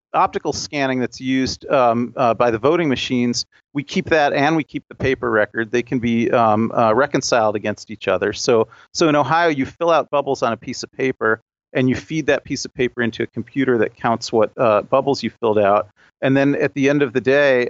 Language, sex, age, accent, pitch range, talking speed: English, male, 40-59, American, 115-135 Hz, 225 wpm